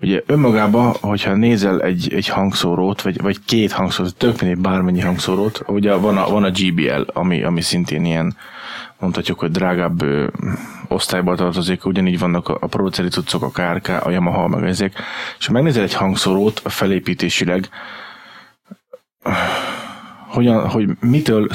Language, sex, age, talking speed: Hungarian, male, 20-39, 135 wpm